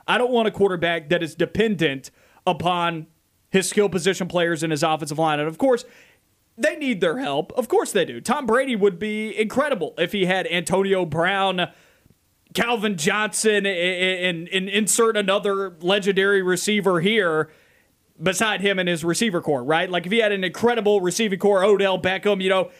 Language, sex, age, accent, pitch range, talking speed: English, male, 30-49, American, 180-225 Hz, 175 wpm